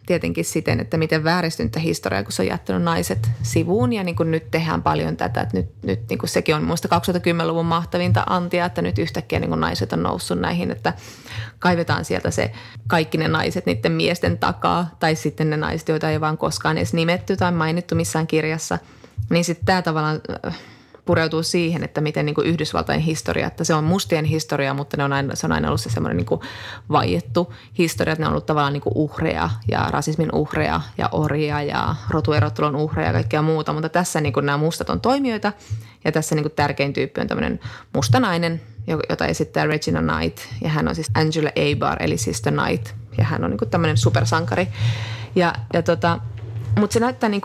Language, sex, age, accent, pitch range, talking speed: Finnish, female, 20-39, native, 110-165 Hz, 190 wpm